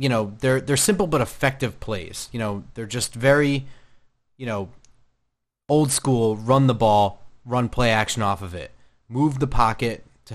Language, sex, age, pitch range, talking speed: English, male, 30-49, 110-145 Hz, 175 wpm